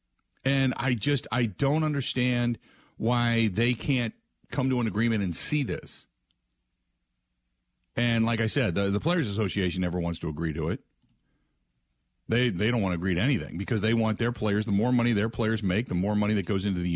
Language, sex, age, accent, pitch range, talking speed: English, male, 40-59, American, 90-130 Hz, 200 wpm